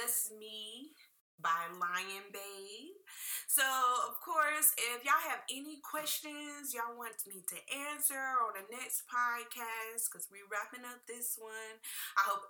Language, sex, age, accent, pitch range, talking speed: English, female, 20-39, American, 185-265 Hz, 145 wpm